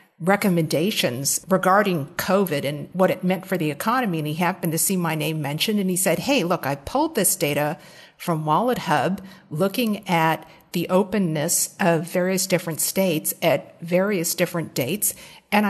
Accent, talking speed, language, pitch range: American, 165 wpm, English, 170-200 Hz